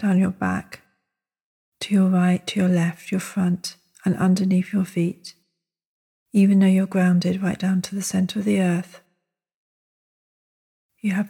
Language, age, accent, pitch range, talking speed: English, 40-59, British, 175-200 Hz, 155 wpm